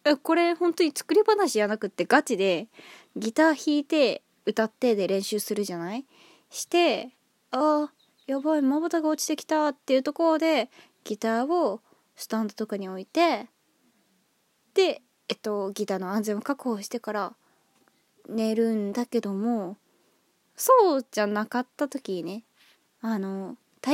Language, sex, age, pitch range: Japanese, female, 20-39, 210-325 Hz